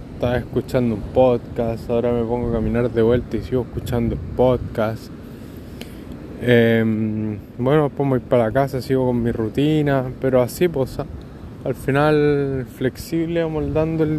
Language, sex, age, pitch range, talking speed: Spanish, male, 20-39, 120-160 Hz, 160 wpm